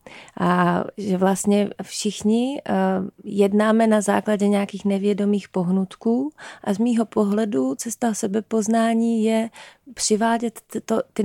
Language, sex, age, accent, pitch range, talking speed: Czech, female, 30-49, native, 180-210 Hz, 100 wpm